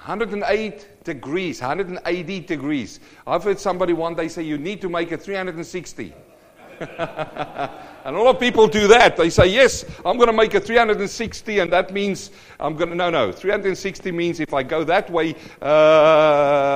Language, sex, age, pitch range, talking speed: English, male, 50-69, 140-200 Hz, 170 wpm